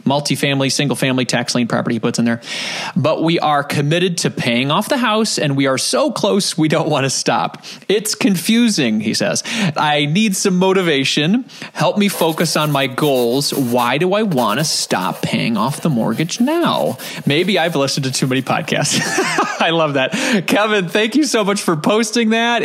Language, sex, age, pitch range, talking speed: English, male, 30-49, 140-215 Hz, 190 wpm